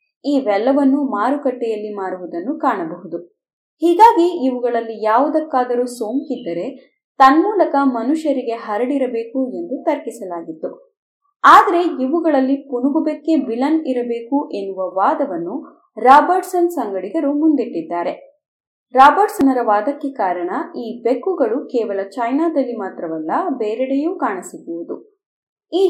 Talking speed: 80 wpm